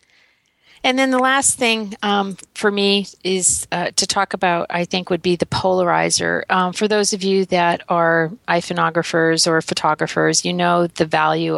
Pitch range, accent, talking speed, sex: 165-195 Hz, American, 170 wpm, female